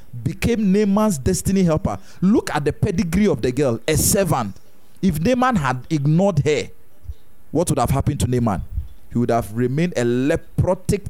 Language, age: English, 40-59